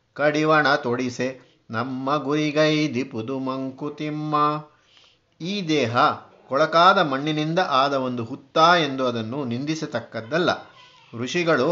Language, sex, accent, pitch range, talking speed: Kannada, male, native, 125-155 Hz, 85 wpm